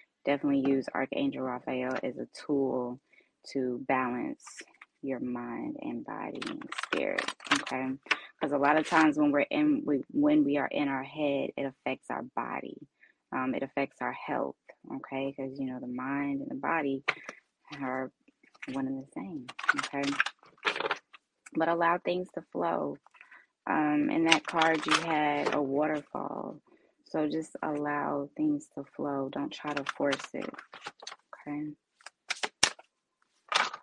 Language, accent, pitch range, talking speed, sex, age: English, American, 135-165 Hz, 140 wpm, female, 20-39